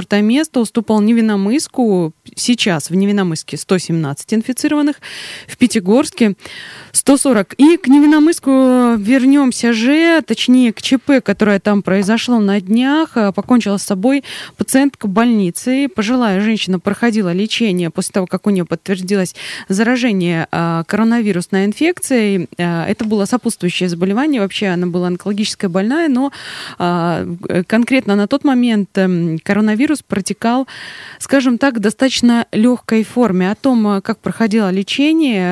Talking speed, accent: 120 wpm, native